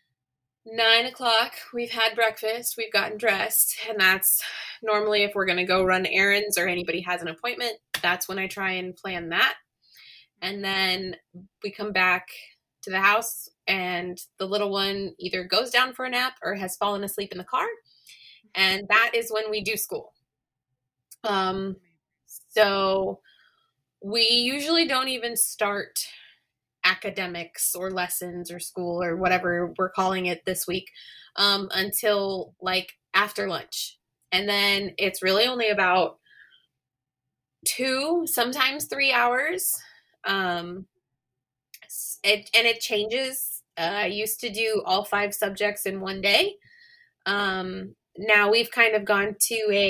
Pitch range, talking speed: 180-225 Hz, 145 wpm